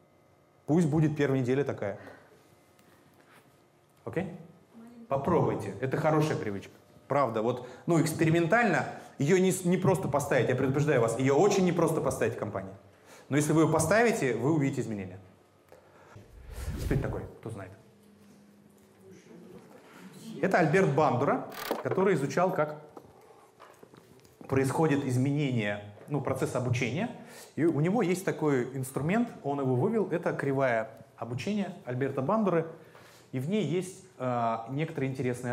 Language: Russian